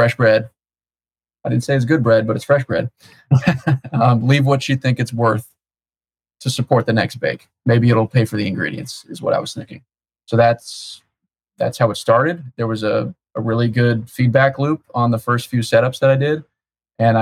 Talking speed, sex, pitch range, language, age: 200 wpm, male, 110-120 Hz, English, 20-39